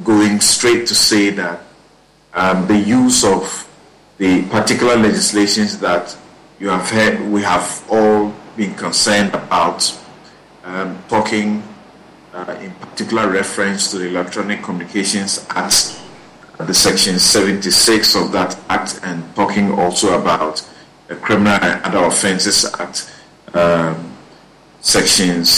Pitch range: 90-120 Hz